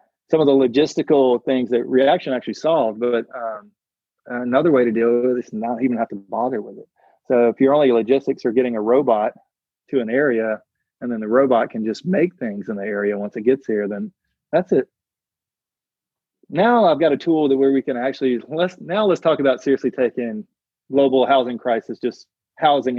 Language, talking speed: English, 200 wpm